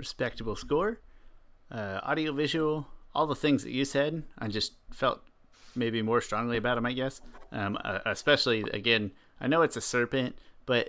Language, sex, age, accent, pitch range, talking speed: English, male, 30-49, American, 105-130 Hz, 170 wpm